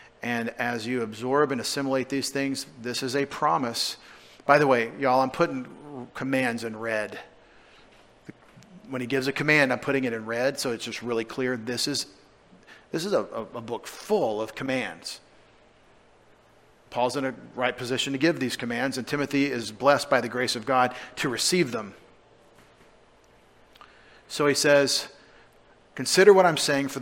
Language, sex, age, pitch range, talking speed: English, male, 40-59, 125-145 Hz, 165 wpm